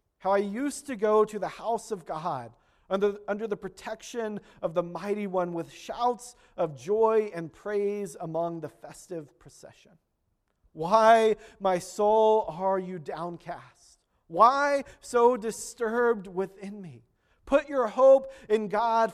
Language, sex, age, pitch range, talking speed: English, male, 40-59, 165-220 Hz, 140 wpm